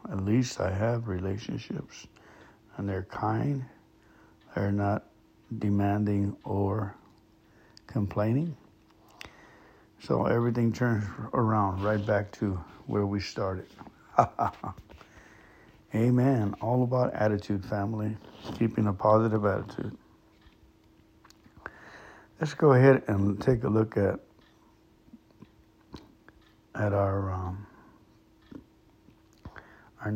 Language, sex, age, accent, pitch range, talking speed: English, male, 60-79, American, 100-110 Hz, 90 wpm